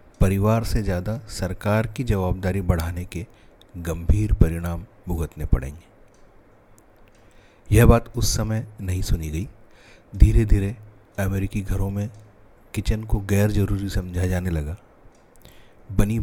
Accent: native